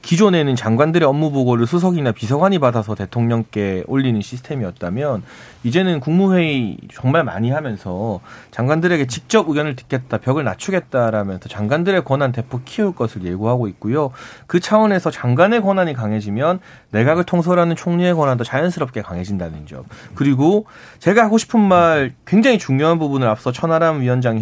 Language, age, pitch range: Korean, 30-49, 120-175 Hz